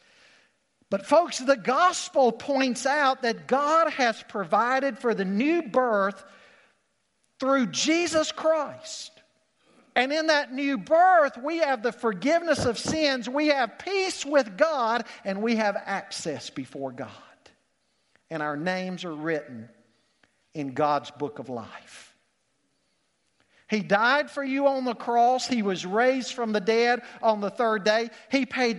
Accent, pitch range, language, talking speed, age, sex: American, 215-285 Hz, English, 140 wpm, 50-69, male